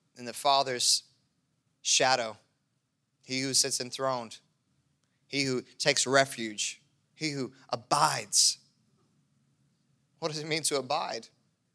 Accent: American